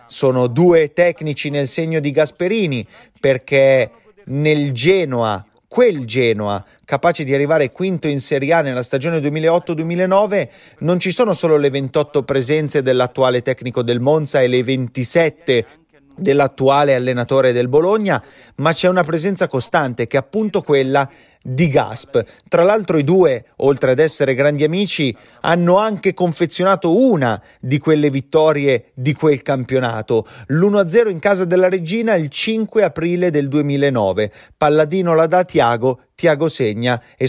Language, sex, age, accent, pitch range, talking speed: Italian, male, 30-49, native, 130-170 Hz, 140 wpm